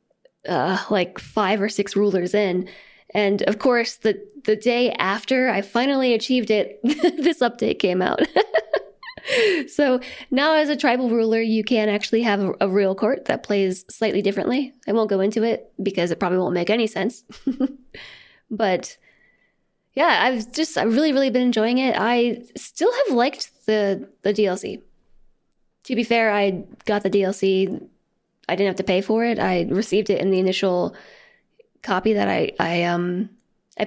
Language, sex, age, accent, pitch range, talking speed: English, female, 10-29, American, 200-245 Hz, 170 wpm